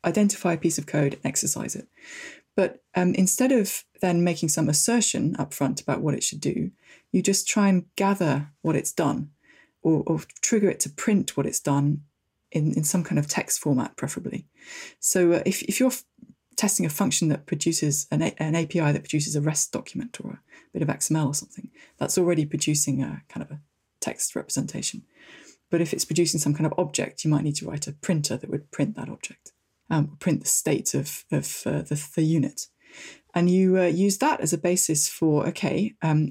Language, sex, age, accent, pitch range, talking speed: English, female, 20-39, British, 150-190 Hz, 205 wpm